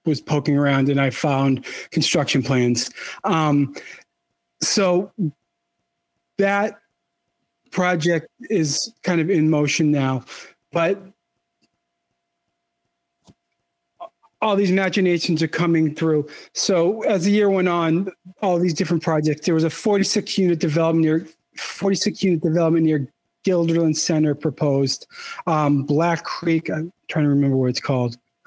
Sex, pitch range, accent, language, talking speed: male, 140-180 Hz, American, English, 125 wpm